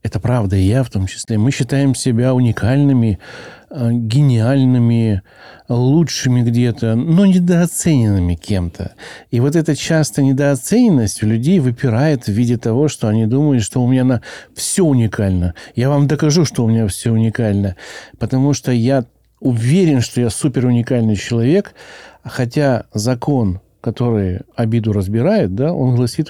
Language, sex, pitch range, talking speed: Russian, male, 110-140 Hz, 140 wpm